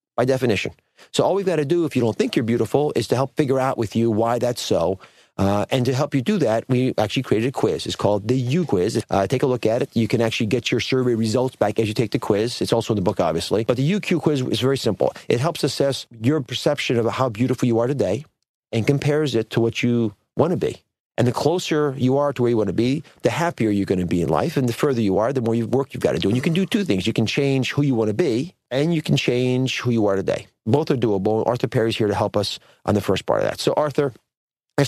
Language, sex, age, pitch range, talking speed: English, male, 40-59, 110-135 Hz, 280 wpm